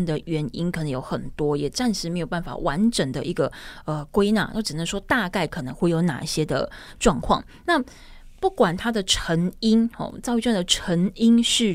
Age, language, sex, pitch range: 20-39, Chinese, female, 170-230 Hz